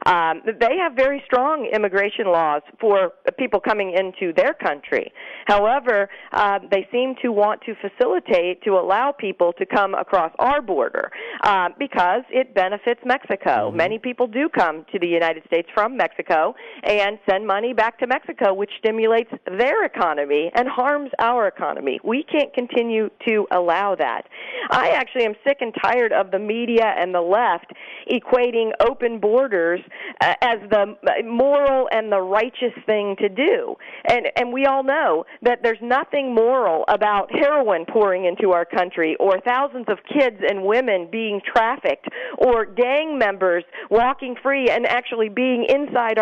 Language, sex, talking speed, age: English, female, 155 wpm, 40-59